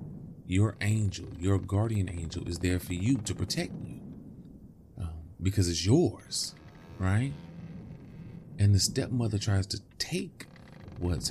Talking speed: 125 wpm